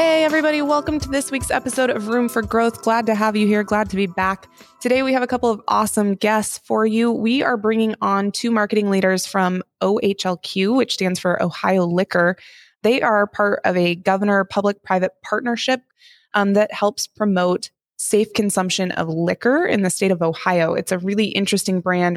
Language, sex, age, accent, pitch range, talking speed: English, female, 20-39, American, 175-215 Hz, 190 wpm